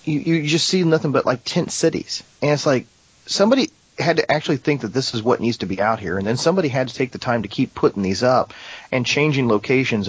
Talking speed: 250 wpm